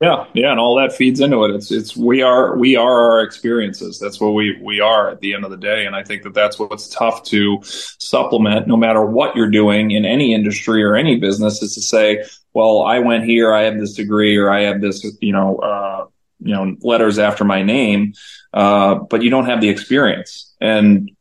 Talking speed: 225 wpm